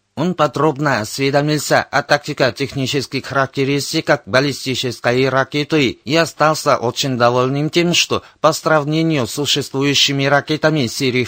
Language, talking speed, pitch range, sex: Russian, 105 wpm, 130-155 Hz, male